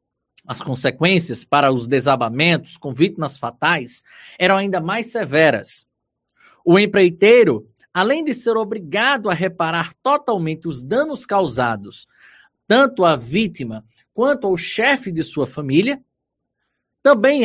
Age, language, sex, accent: 20-39, Portuguese, male, Brazilian